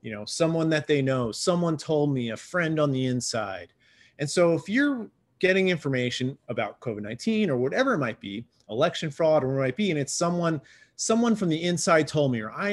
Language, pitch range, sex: English, 120-165 Hz, male